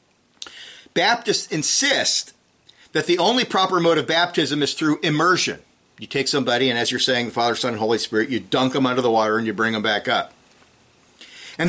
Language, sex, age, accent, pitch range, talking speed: English, male, 50-69, American, 115-160 Hz, 190 wpm